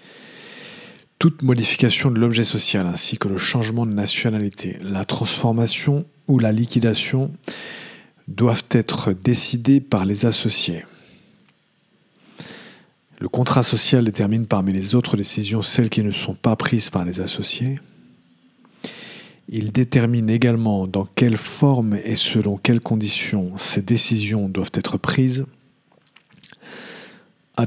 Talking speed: 120 wpm